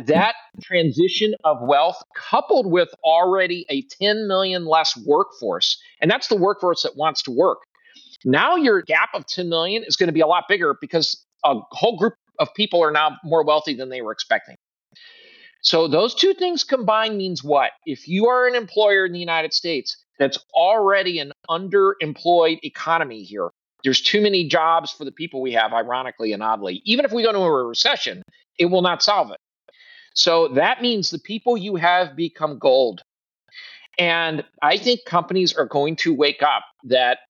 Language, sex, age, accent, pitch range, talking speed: English, male, 40-59, American, 150-215 Hz, 180 wpm